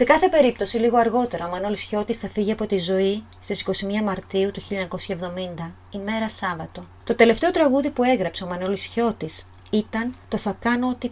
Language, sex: Greek, female